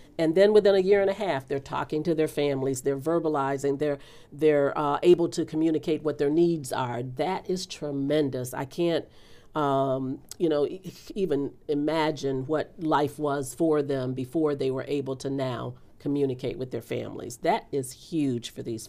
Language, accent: English, American